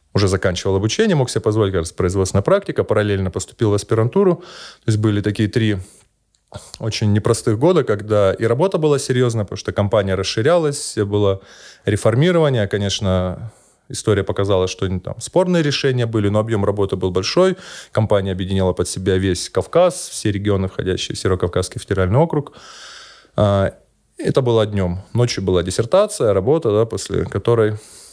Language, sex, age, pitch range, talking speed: Russian, male, 20-39, 100-125 Hz, 145 wpm